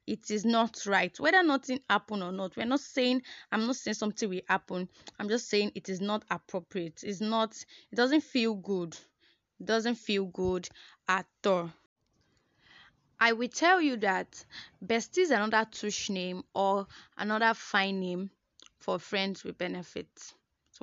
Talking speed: 160 wpm